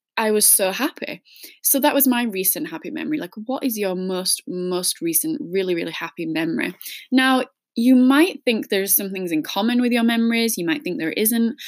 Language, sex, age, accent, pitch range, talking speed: English, female, 10-29, British, 180-285 Hz, 200 wpm